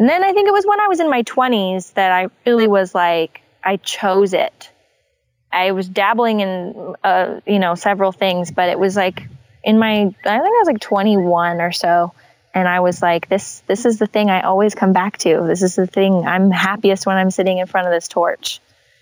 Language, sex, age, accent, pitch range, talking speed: English, female, 20-39, American, 185-225 Hz, 225 wpm